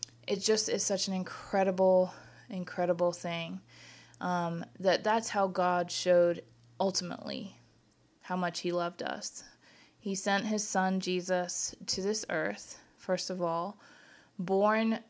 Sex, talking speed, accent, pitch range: female, 125 wpm, American, 180-205 Hz